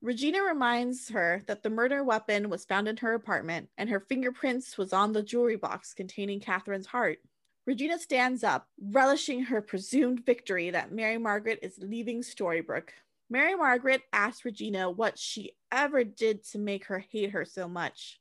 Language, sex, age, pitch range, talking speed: English, female, 20-39, 205-265 Hz, 170 wpm